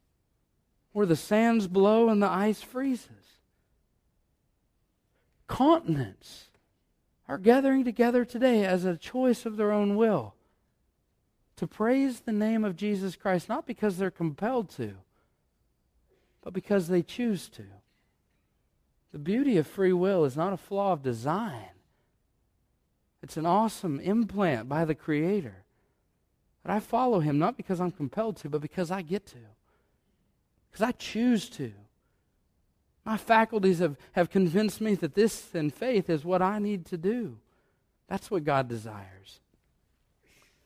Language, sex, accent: English, male, American